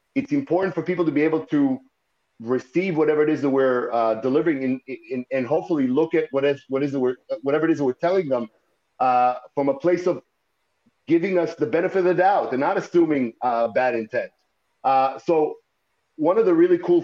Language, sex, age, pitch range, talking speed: English, male, 40-59, 135-185 Hz, 215 wpm